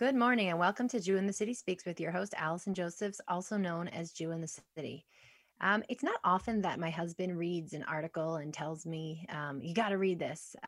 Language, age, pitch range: English, 20-39, 160-195 Hz